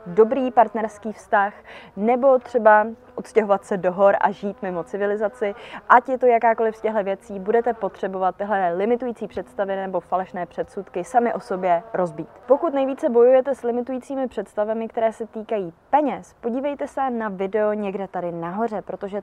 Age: 20-39